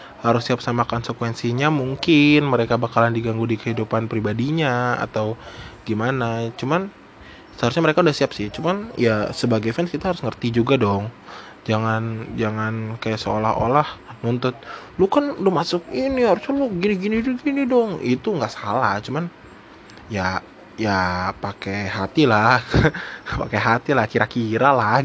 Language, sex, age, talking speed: Indonesian, male, 20-39, 135 wpm